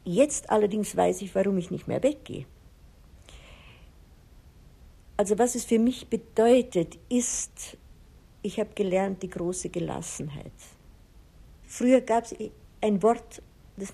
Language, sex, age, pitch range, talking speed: German, female, 60-79, 175-215 Hz, 120 wpm